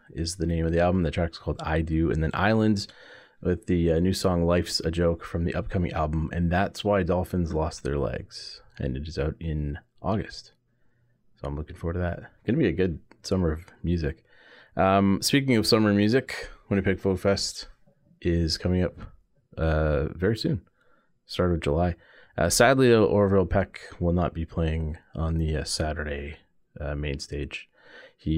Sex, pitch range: male, 80-95 Hz